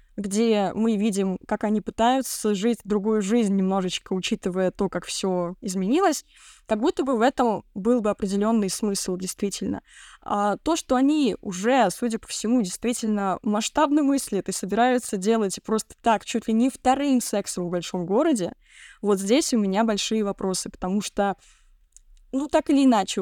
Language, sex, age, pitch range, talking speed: Russian, female, 20-39, 200-250 Hz, 160 wpm